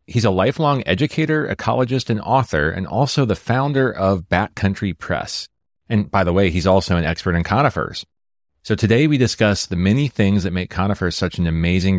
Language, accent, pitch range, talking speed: English, American, 90-115 Hz, 185 wpm